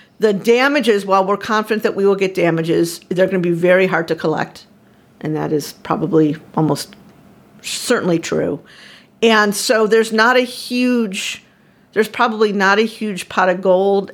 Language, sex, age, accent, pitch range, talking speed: English, female, 50-69, American, 180-220 Hz, 165 wpm